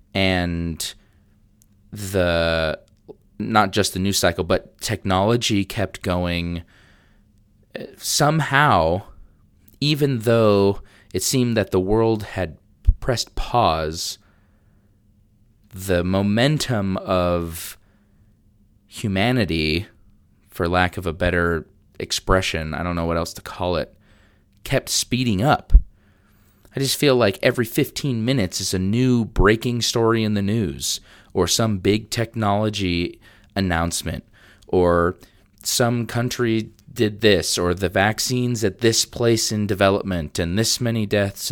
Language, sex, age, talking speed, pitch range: English, male, 30-49, 115 wpm, 90-110 Hz